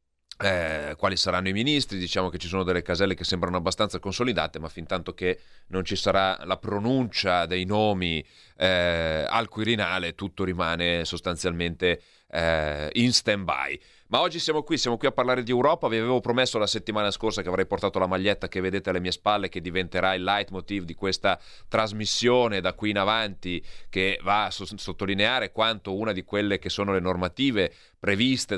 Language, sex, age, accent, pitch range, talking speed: Italian, male, 30-49, native, 90-105 Hz, 180 wpm